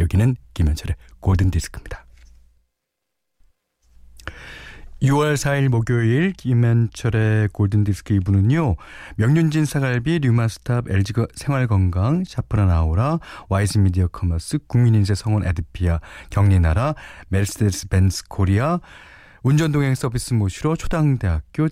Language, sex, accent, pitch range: Korean, male, native, 90-135 Hz